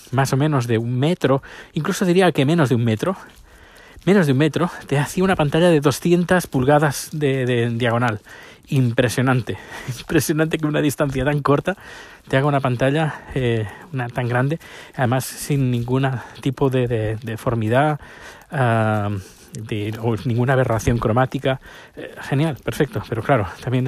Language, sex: Spanish, male